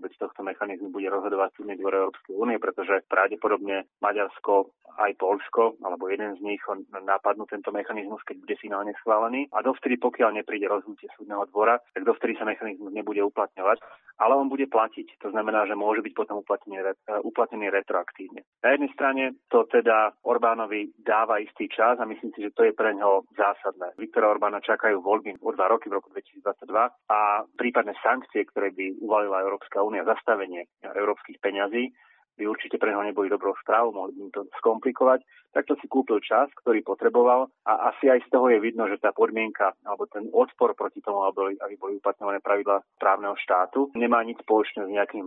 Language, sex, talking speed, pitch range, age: Slovak, male, 180 wpm, 100-120 Hz, 30-49